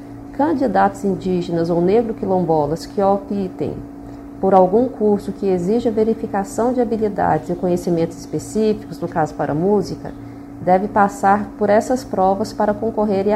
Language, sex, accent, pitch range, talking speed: Portuguese, female, Brazilian, 180-220 Hz, 125 wpm